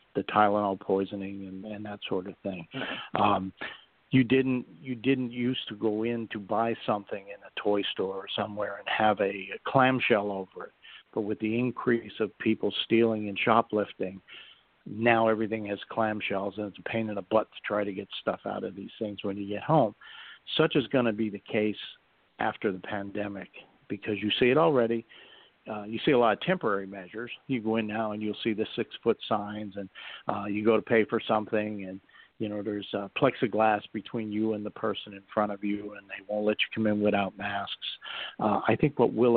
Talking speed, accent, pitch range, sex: 210 wpm, American, 100-115 Hz, male